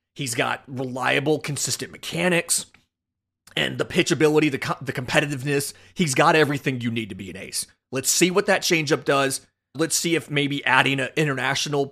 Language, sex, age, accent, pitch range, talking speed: English, male, 30-49, American, 125-165 Hz, 175 wpm